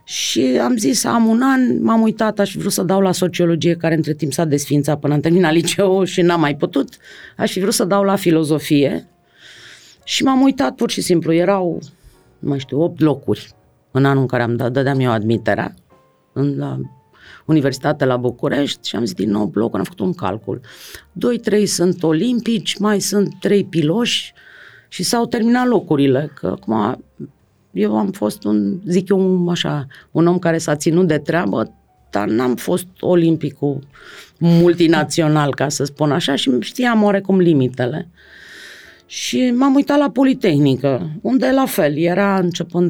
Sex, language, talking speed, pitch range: female, Romanian, 170 wpm, 135-190 Hz